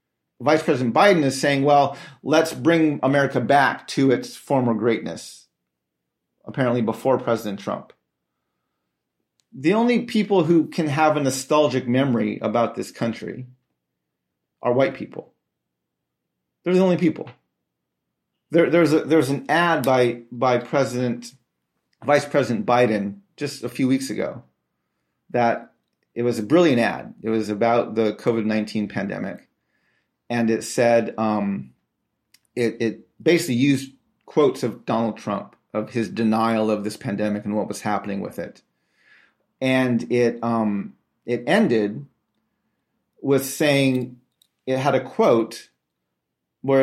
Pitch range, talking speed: 105-140 Hz, 130 wpm